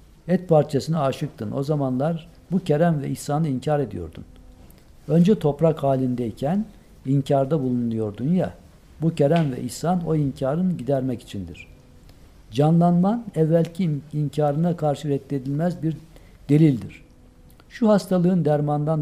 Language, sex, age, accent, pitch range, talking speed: Turkish, male, 60-79, native, 115-165 Hz, 110 wpm